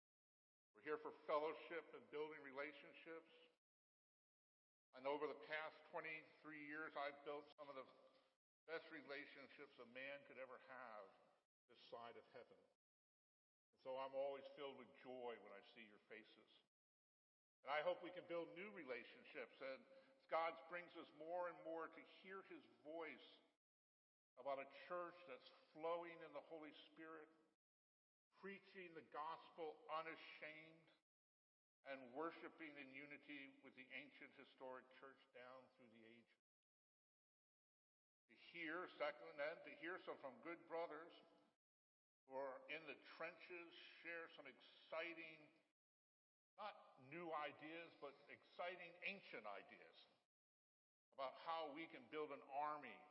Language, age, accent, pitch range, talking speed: English, 50-69, American, 140-170 Hz, 135 wpm